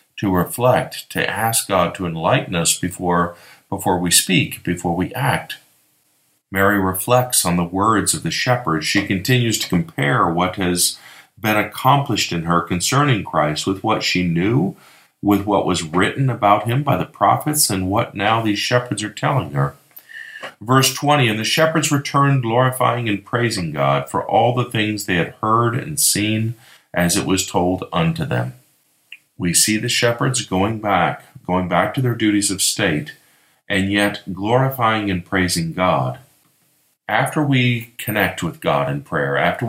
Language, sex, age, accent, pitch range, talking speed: English, male, 50-69, American, 90-125 Hz, 165 wpm